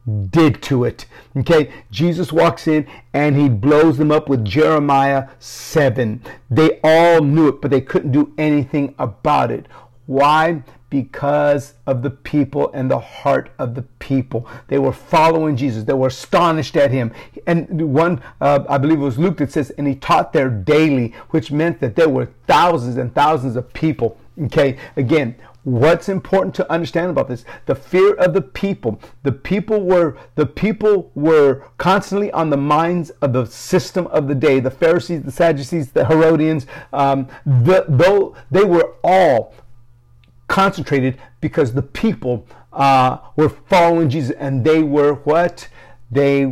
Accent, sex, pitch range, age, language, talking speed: American, male, 130-160 Hz, 50-69, English, 160 wpm